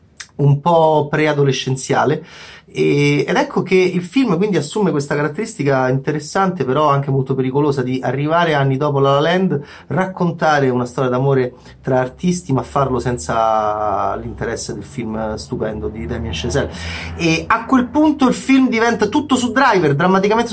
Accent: native